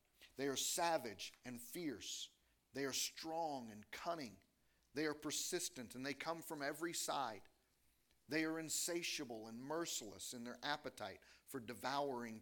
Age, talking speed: 40-59, 140 wpm